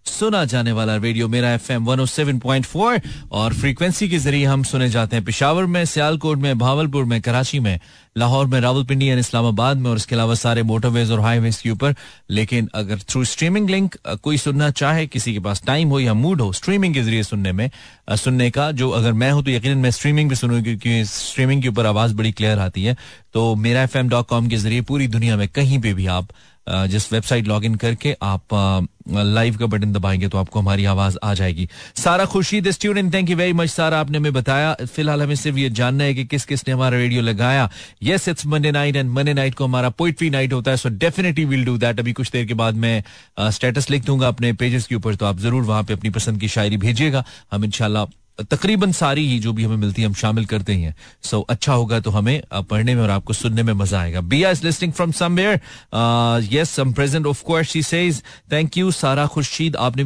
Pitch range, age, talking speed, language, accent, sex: 115-145 Hz, 30-49, 210 wpm, Hindi, native, male